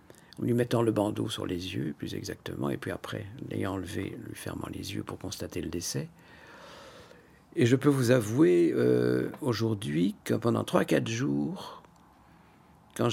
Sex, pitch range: male, 105-130 Hz